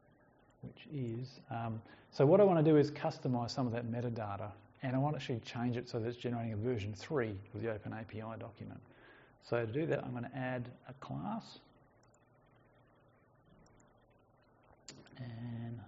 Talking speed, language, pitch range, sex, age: 165 wpm, English, 115-130 Hz, male, 40-59